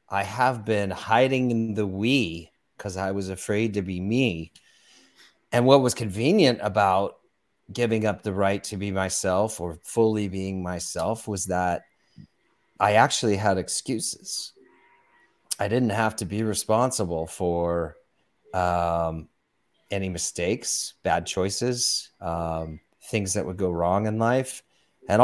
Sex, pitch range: male, 95-120 Hz